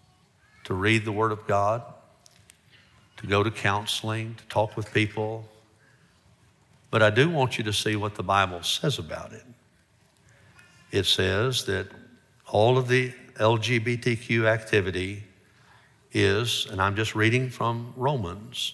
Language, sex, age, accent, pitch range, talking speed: English, male, 60-79, American, 105-130 Hz, 135 wpm